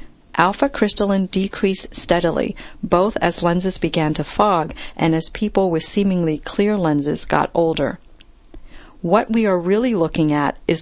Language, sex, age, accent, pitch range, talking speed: English, female, 40-59, American, 160-190 Hz, 140 wpm